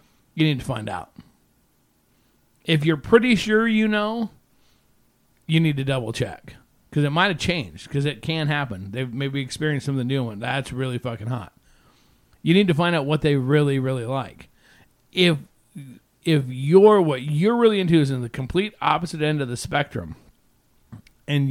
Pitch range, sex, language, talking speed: 125-160 Hz, male, English, 180 wpm